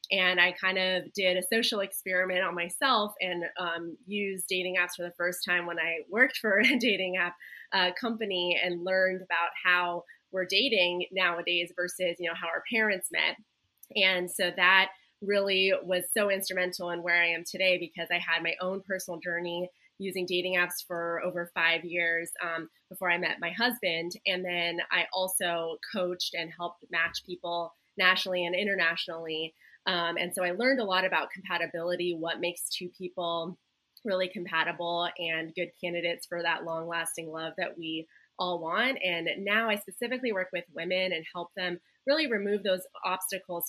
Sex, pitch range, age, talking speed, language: female, 170-190 Hz, 20-39, 175 wpm, English